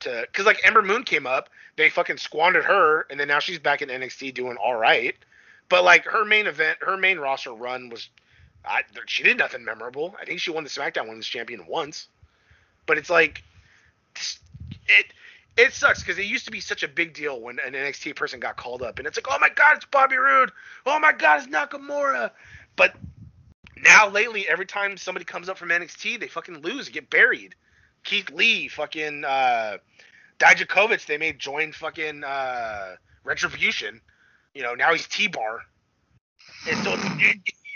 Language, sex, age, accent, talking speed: English, male, 30-49, American, 185 wpm